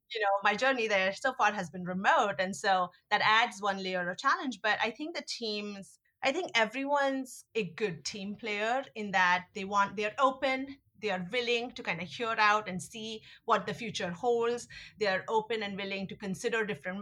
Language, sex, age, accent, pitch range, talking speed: English, female, 30-49, Indian, 185-230 Hz, 205 wpm